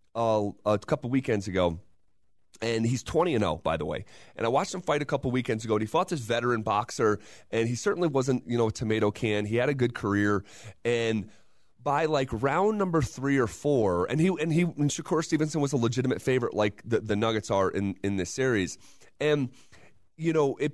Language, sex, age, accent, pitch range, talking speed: English, male, 30-49, American, 115-145 Hz, 215 wpm